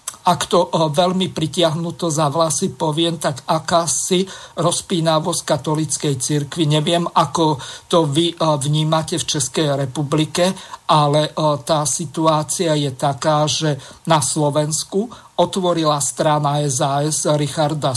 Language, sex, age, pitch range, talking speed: Slovak, male, 50-69, 150-170 Hz, 110 wpm